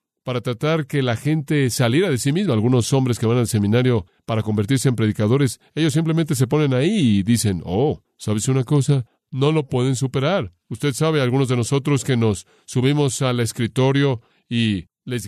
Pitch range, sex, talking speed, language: 115-140 Hz, male, 180 wpm, Spanish